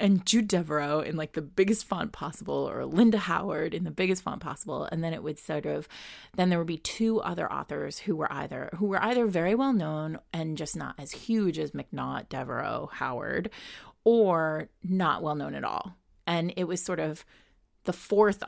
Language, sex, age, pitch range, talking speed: English, female, 30-49, 155-195 Hz, 200 wpm